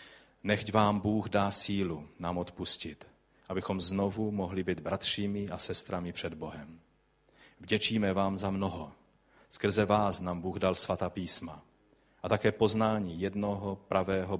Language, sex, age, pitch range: Czech, male, 30-49, 90-105 Hz